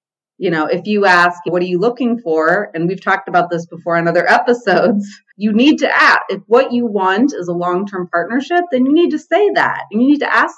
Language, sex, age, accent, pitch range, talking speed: English, female, 30-49, American, 170-225 Hz, 240 wpm